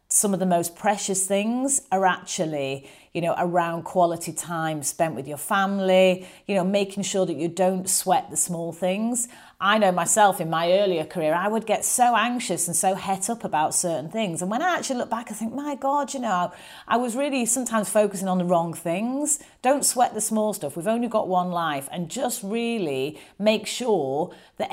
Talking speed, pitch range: 205 wpm, 170-220 Hz